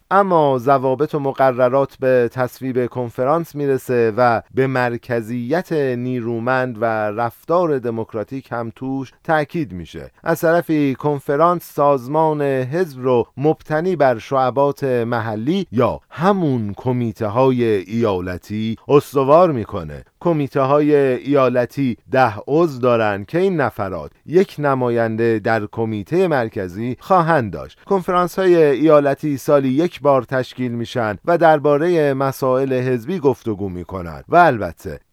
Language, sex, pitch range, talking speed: Persian, male, 120-150 Hz, 115 wpm